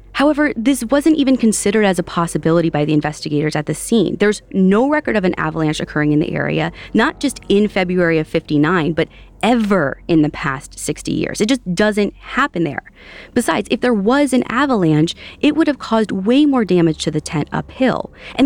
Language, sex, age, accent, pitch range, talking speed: English, female, 30-49, American, 155-215 Hz, 195 wpm